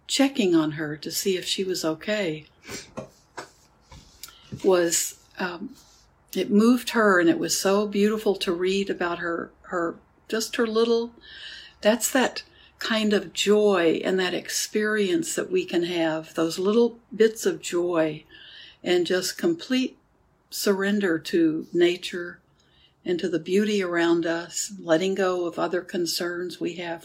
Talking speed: 140 wpm